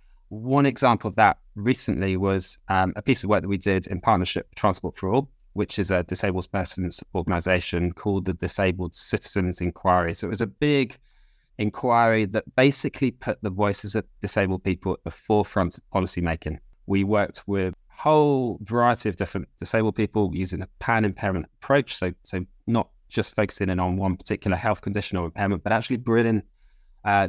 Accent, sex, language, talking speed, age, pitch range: British, male, English, 180 wpm, 20-39, 95-115 Hz